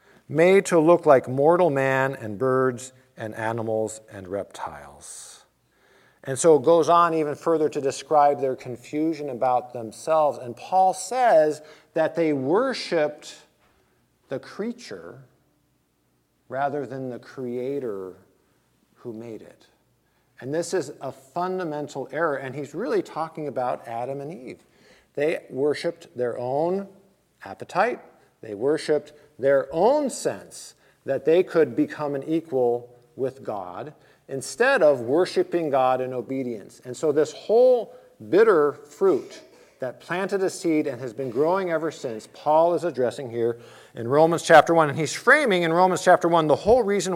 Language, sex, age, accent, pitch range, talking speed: English, male, 50-69, American, 130-170 Hz, 145 wpm